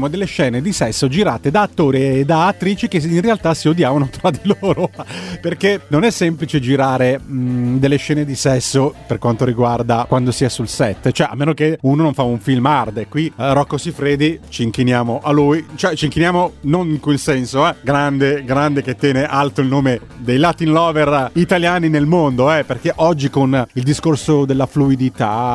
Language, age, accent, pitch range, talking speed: Italian, 30-49, native, 135-170 Hz, 190 wpm